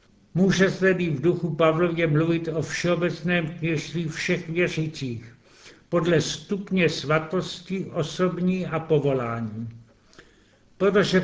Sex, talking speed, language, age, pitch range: male, 95 wpm, Czech, 70-89, 155-180 Hz